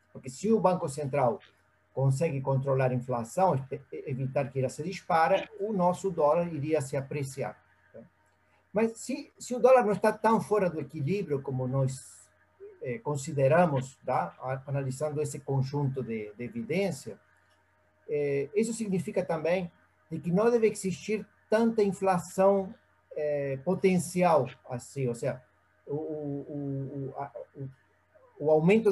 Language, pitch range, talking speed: Portuguese, 135-180 Hz, 135 wpm